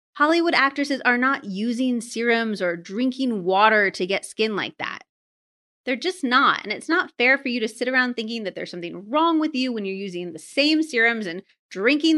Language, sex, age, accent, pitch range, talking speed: English, female, 30-49, American, 205-280 Hz, 200 wpm